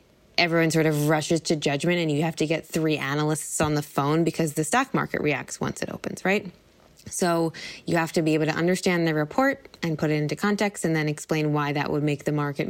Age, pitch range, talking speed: 20-39, 155-205 Hz, 230 wpm